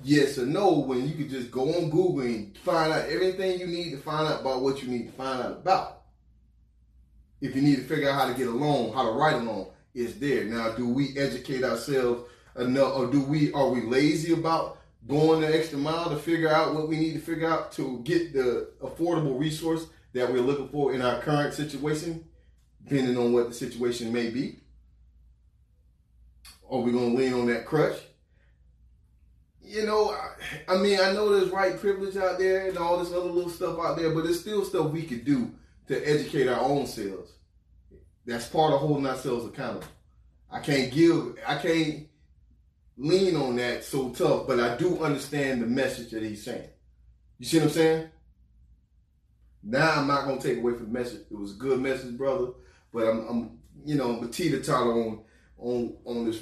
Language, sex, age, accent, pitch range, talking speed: English, male, 30-49, American, 115-160 Hz, 200 wpm